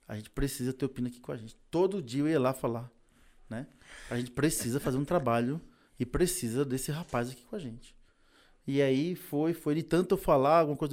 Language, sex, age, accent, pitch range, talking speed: Portuguese, male, 20-39, Brazilian, 120-165 Hz, 215 wpm